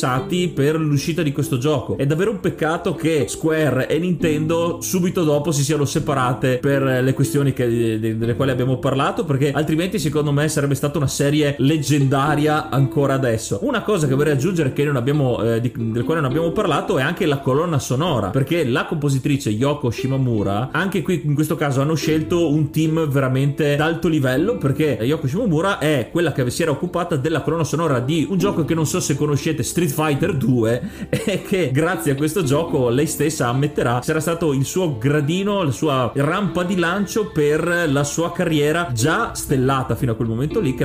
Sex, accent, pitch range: male, native, 135-170 Hz